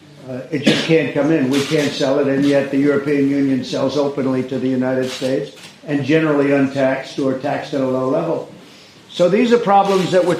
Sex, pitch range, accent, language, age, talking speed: male, 140-160 Hz, American, English, 50-69, 210 wpm